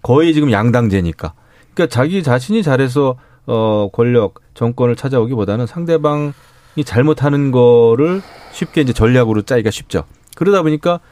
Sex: male